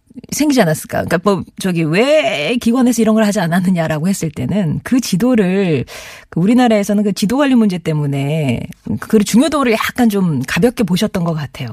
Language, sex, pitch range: Korean, female, 160-240 Hz